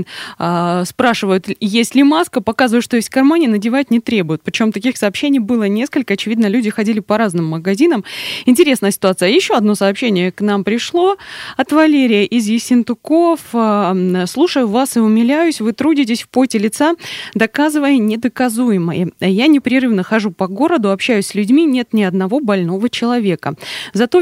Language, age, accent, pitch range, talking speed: Russian, 20-39, native, 195-255 Hz, 145 wpm